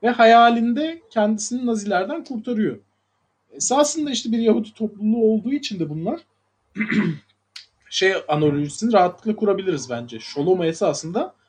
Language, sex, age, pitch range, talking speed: Turkish, male, 30-49, 145-230 Hz, 110 wpm